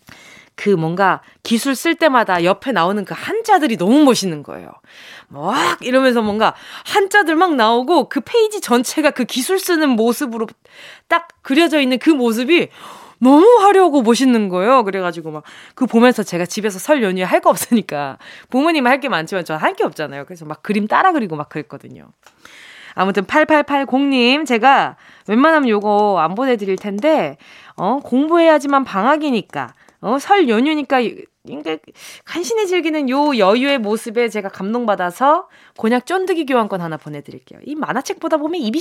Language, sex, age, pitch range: Korean, female, 20-39, 210-310 Hz